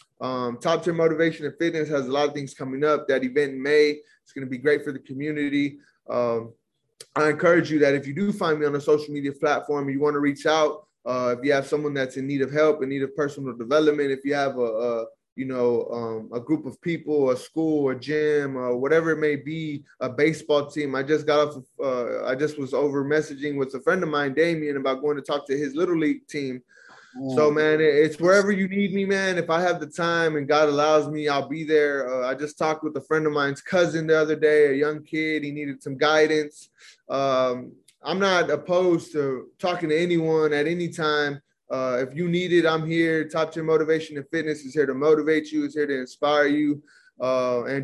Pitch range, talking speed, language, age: 140-160 Hz, 230 wpm, English, 20-39